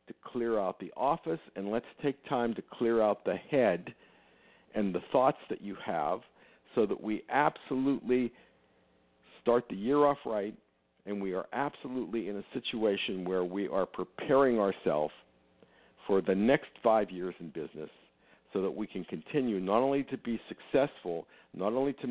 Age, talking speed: 50-69, 165 wpm